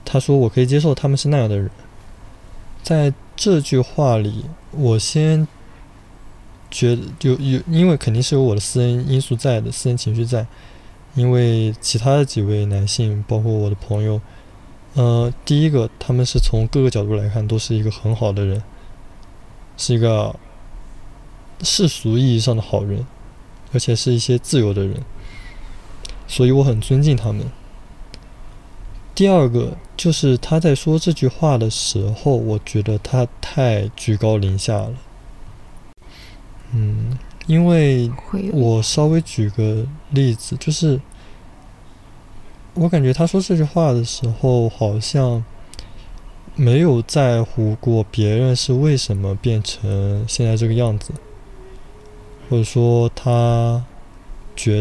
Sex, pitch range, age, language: male, 105-130 Hz, 20-39, Chinese